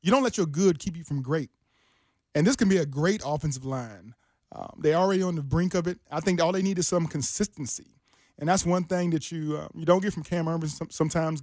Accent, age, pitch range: American, 20-39, 145-180 Hz